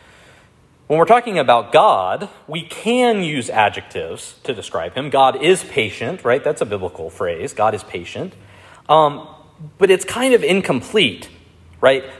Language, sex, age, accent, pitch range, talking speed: English, male, 30-49, American, 125-195 Hz, 150 wpm